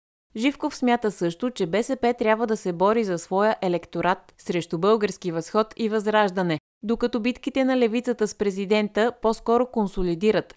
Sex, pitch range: female, 175-230 Hz